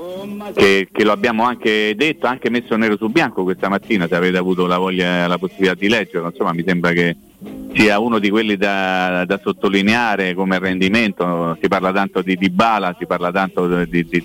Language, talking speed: Italian, 190 wpm